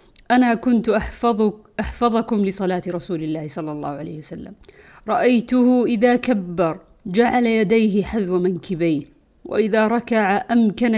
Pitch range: 175-220 Hz